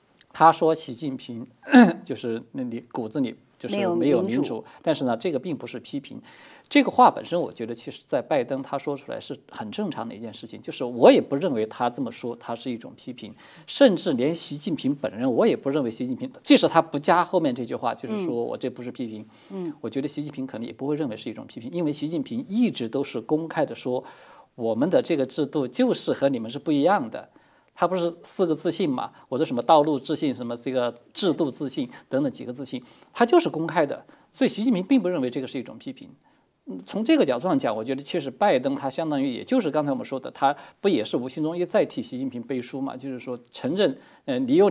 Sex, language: male, Chinese